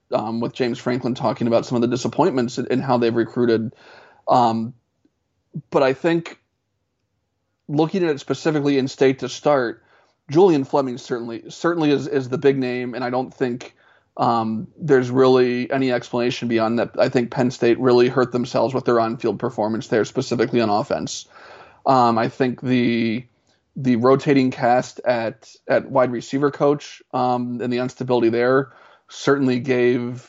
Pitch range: 115-135 Hz